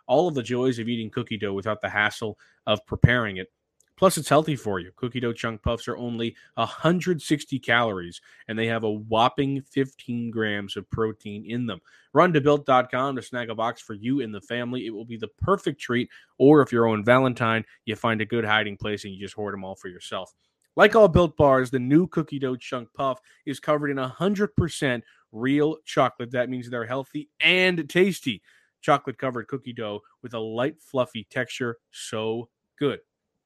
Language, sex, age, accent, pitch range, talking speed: English, male, 20-39, American, 110-135 Hz, 190 wpm